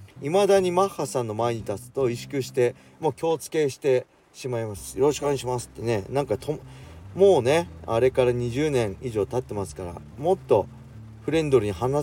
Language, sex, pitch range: Japanese, male, 100-145 Hz